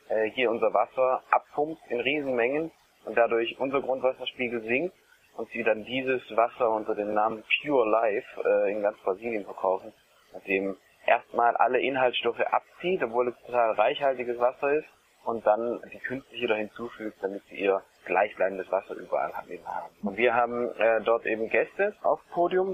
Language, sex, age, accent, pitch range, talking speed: German, male, 20-39, German, 115-145 Hz, 155 wpm